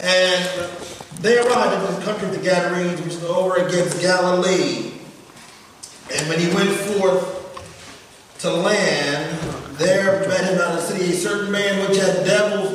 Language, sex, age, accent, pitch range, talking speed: English, male, 40-59, American, 175-210 Hz, 160 wpm